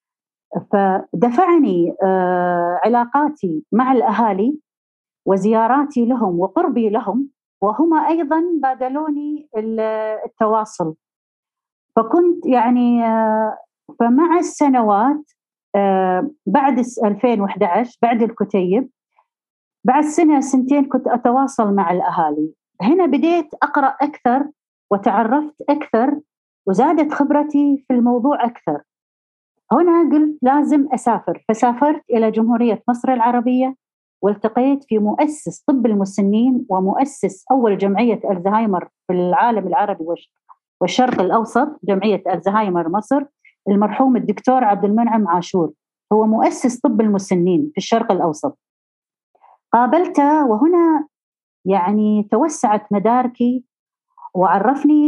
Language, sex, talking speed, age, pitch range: Arabic, female, 90 wpm, 40-59, 205-280 Hz